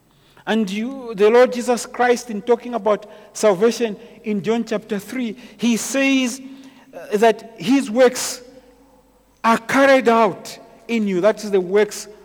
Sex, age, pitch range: male, 50-69, 155-225 Hz